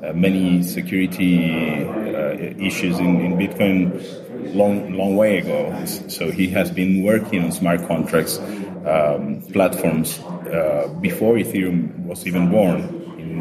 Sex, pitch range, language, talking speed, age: male, 90-100 Hz, English, 130 wpm, 30-49